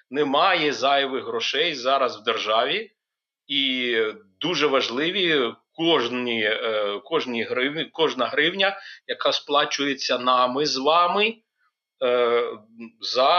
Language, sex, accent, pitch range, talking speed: Ukrainian, male, native, 125-165 Hz, 90 wpm